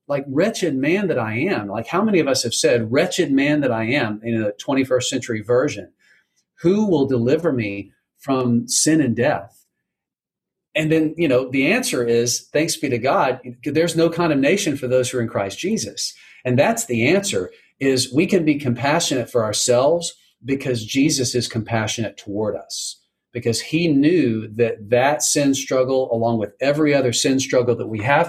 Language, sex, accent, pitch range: English, male, American, 115-135 Hz